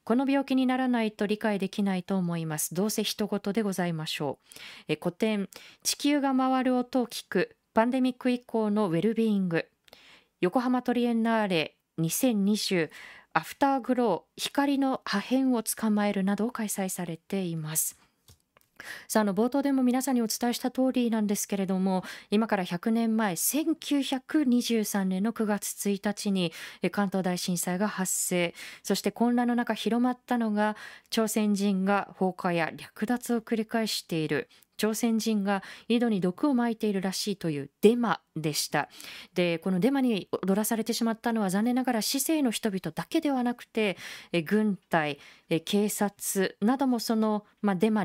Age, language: 20-39, Japanese